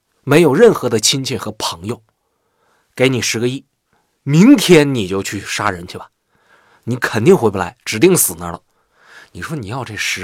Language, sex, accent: Chinese, male, native